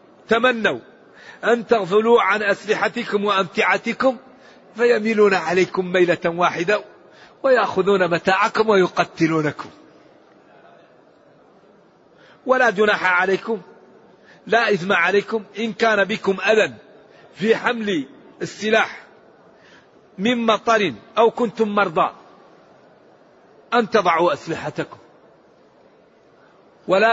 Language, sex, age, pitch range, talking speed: Arabic, male, 50-69, 180-225 Hz, 75 wpm